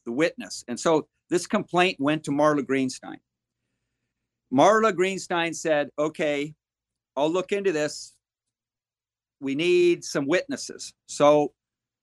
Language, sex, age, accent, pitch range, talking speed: English, male, 50-69, American, 130-180 Hz, 110 wpm